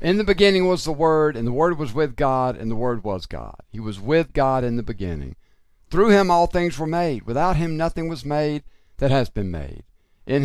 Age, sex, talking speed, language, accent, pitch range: 60-79, male, 230 wpm, English, American, 105-150 Hz